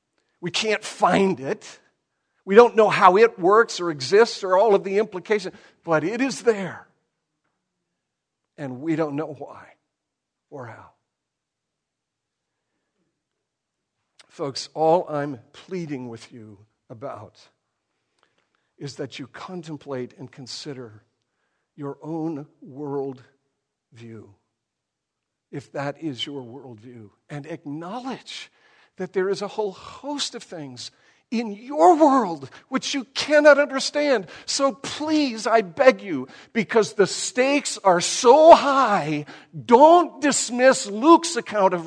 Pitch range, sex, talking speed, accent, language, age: 145-235 Hz, male, 120 wpm, American, English, 60-79